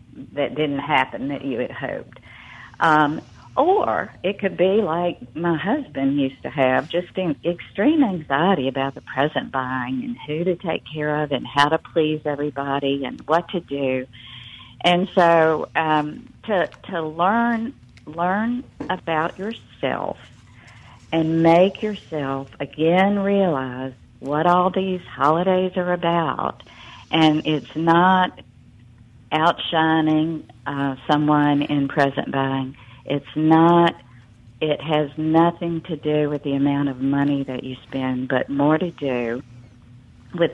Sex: female